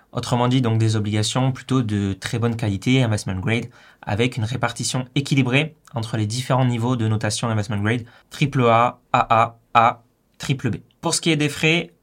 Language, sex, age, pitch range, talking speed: French, male, 20-39, 120-145 Hz, 180 wpm